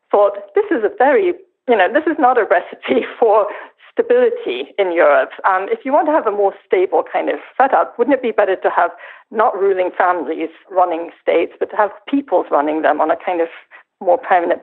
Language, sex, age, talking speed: English, female, 50-69, 210 wpm